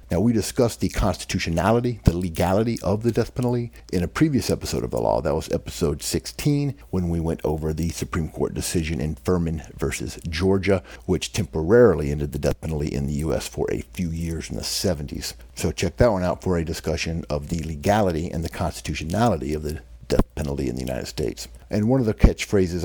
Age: 60-79